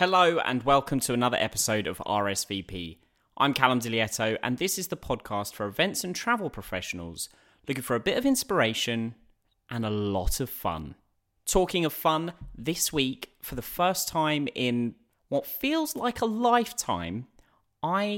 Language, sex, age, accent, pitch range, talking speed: English, male, 30-49, British, 100-170 Hz, 160 wpm